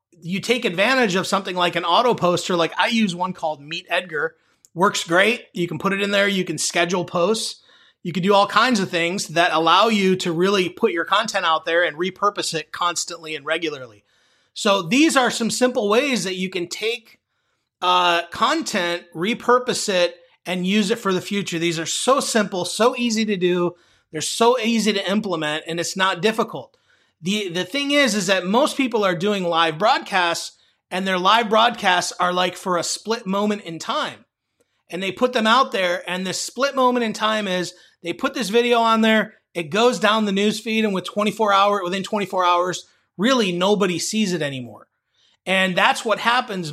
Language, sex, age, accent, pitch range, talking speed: English, male, 30-49, American, 175-220 Hz, 200 wpm